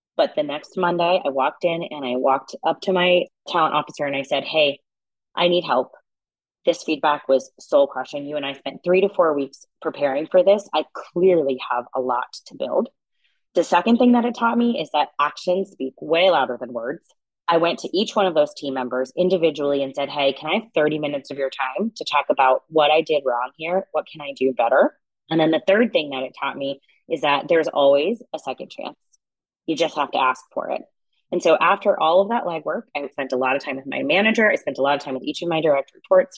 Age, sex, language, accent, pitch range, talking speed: 20-39, female, English, American, 140-195 Hz, 240 wpm